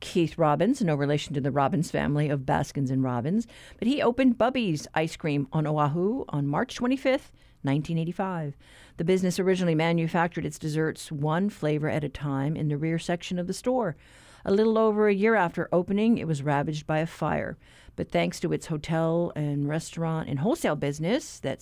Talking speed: 185 wpm